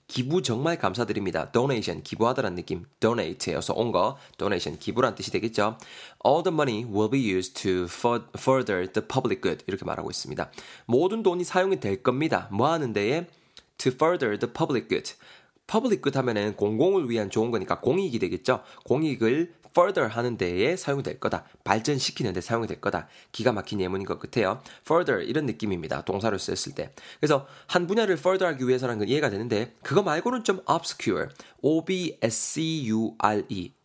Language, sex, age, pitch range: Korean, male, 20-39, 110-170 Hz